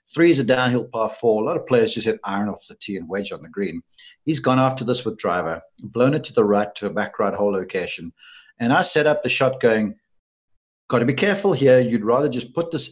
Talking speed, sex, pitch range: 255 wpm, male, 110-150 Hz